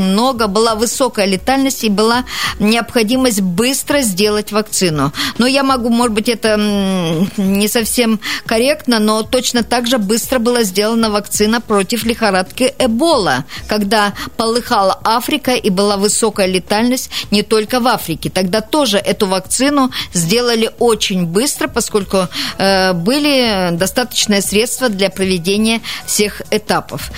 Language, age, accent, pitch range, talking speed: Russian, 40-59, native, 195-245 Hz, 125 wpm